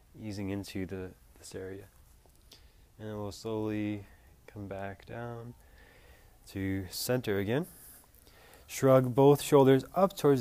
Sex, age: male, 20-39